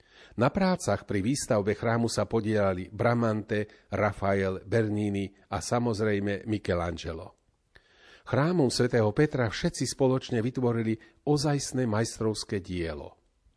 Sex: male